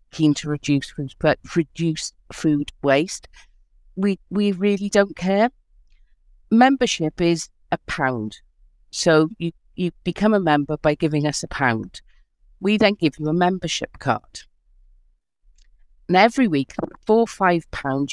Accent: British